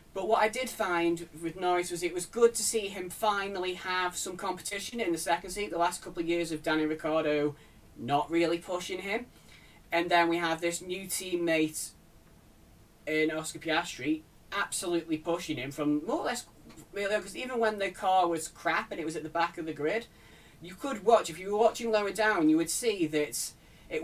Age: 20-39